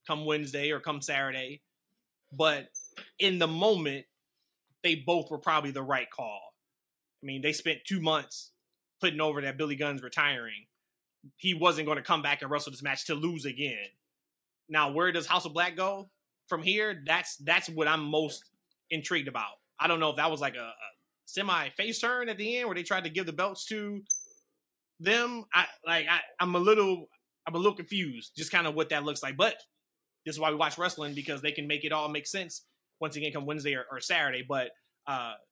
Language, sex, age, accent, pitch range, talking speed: English, male, 20-39, American, 145-180 Hz, 205 wpm